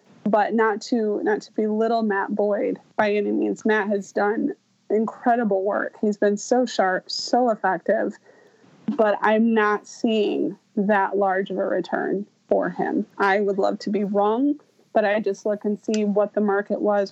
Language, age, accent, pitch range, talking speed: English, 20-39, American, 205-235 Hz, 170 wpm